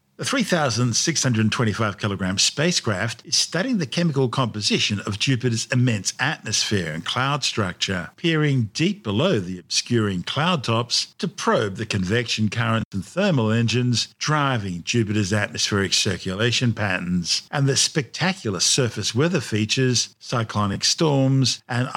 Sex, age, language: male, 50-69, English